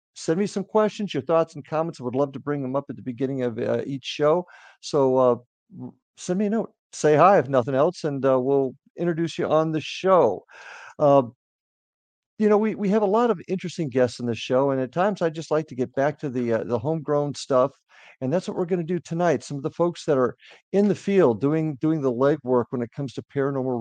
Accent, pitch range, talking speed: American, 130-165 Hz, 240 wpm